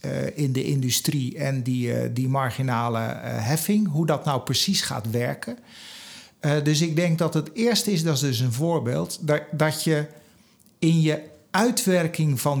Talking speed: 170 wpm